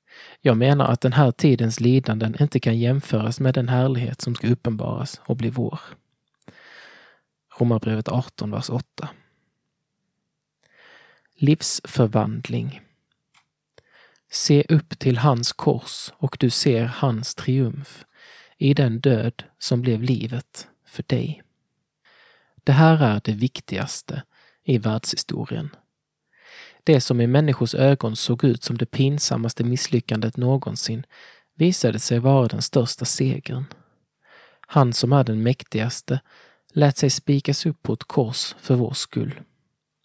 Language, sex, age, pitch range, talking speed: Swedish, male, 20-39, 120-140 Hz, 125 wpm